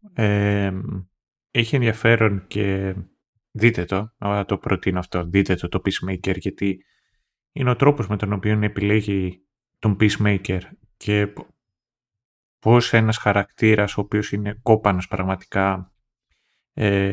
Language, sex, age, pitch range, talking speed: Greek, male, 30-49, 95-115 Hz, 115 wpm